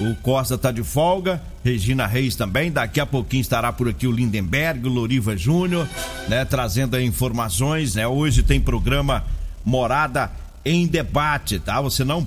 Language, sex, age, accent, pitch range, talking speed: Portuguese, male, 50-69, Brazilian, 125-165 Hz, 160 wpm